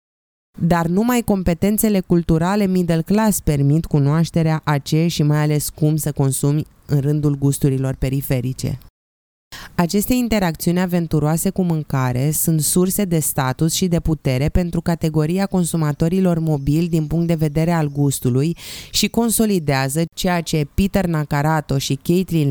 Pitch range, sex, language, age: 145-175 Hz, female, Romanian, 20-39